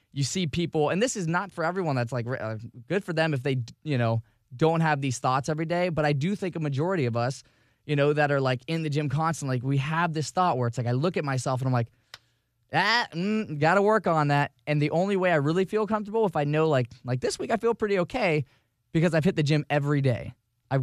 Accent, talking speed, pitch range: American, 260 wpm, 125-165 Hz